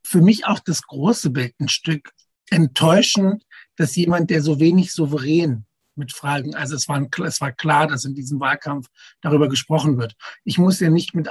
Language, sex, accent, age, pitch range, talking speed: German, male, German, 60-79, 140-195 Hz, 185 wpm